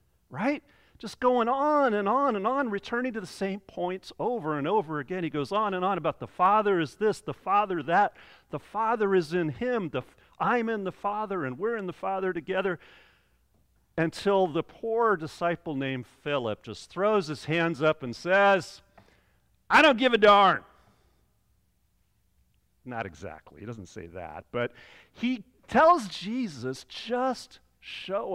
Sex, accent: male, American